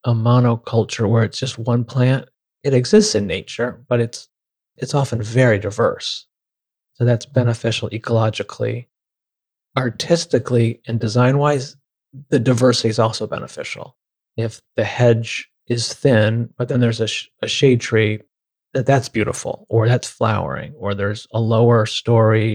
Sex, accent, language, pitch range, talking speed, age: male, American, English, 115-130 Hz, 140 wpm, 30-49